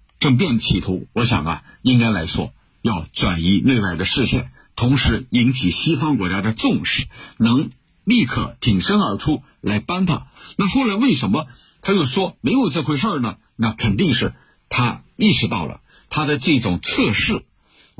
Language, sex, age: Chinese, male, 50-69